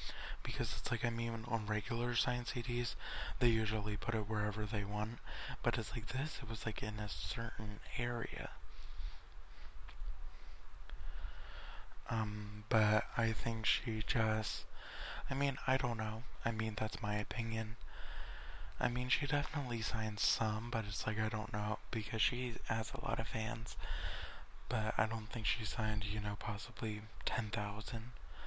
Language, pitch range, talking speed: English, 105-115 Hz, 150 wpm